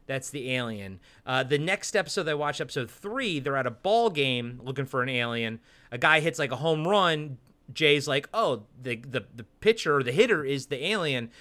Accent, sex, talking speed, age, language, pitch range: American, male, 210 wpm, 30-49, English, 130-185 Hz